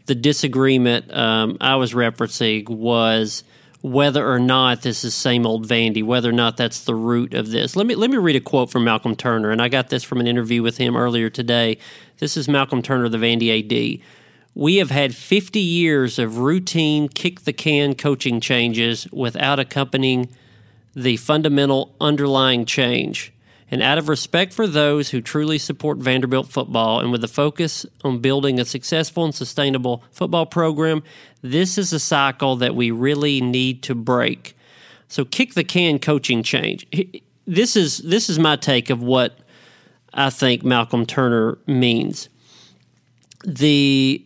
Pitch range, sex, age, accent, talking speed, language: 120-150 Hz, male, 40-59, American, 155 wpm, English